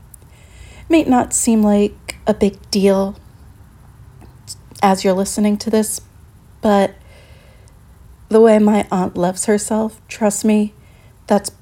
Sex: female